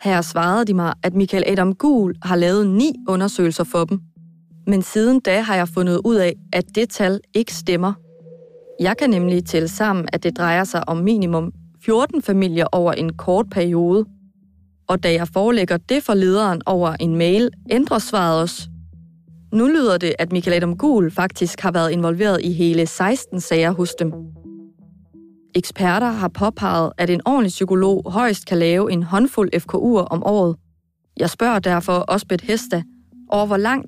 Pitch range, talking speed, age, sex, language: 170-200 Hz, 175 wpm, 30-49, female, Danish